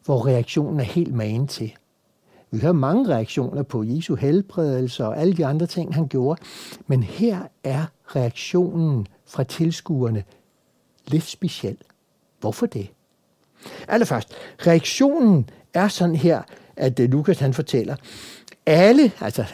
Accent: native